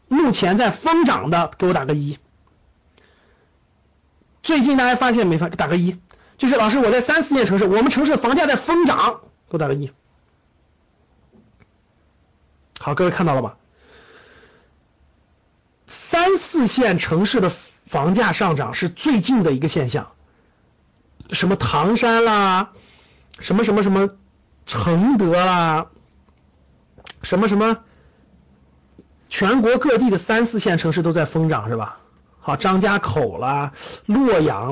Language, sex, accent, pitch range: Chinese, male, native, 145-235 Hz